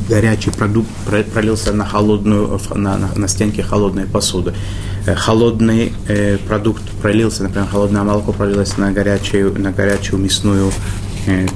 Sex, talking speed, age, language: male, 130 wpm, 20-39, Russian